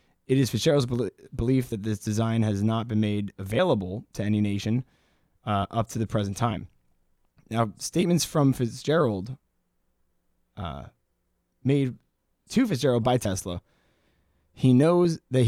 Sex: male